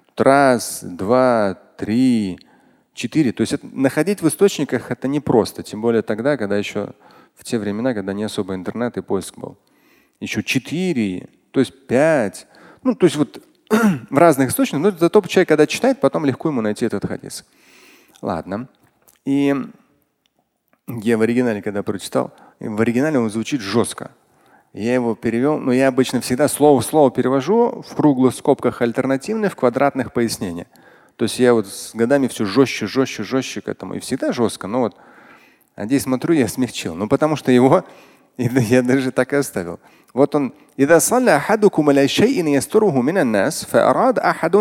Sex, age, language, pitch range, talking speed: male, 30-49, Russian, 115-160 Hz, 145 wpm